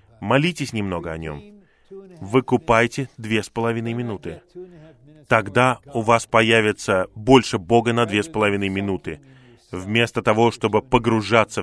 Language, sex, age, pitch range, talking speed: Russian, male, 20-39, 105-130 Hz, 125 wpm